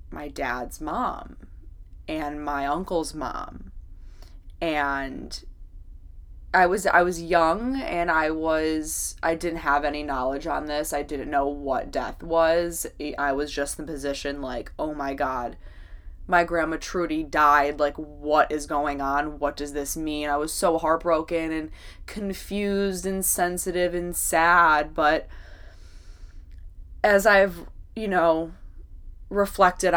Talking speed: 135 wpm